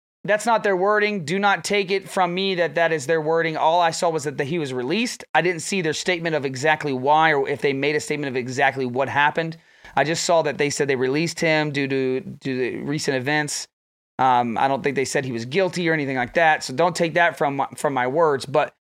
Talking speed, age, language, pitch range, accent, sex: 245 wpm, 30-49, English, 135-180 Hz, American, male